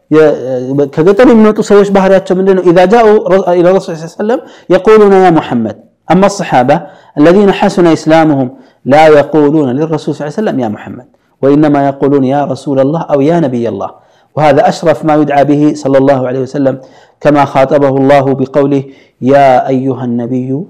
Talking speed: 155 wpm